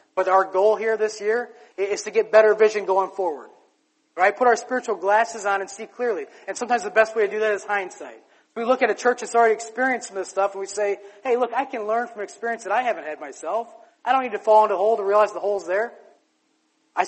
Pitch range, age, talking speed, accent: 195-235 Hz, 30-49, 255 wpm, American